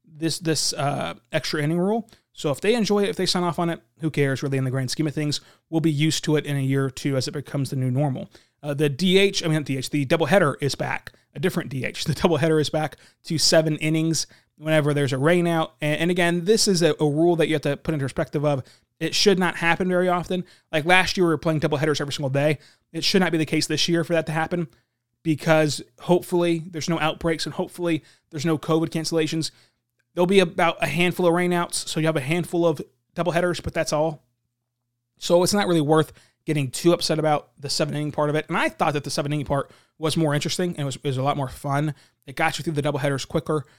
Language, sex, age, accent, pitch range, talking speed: English, male, 30-49, American, 140-170 Hz, 250 wpm